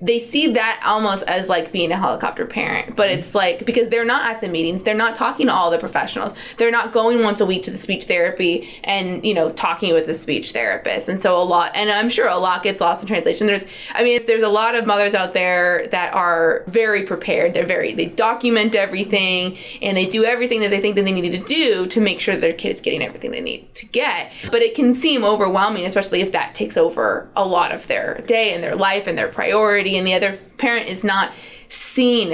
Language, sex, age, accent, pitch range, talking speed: English, female, 20-39, American, 180-230 Hz, 240 wpm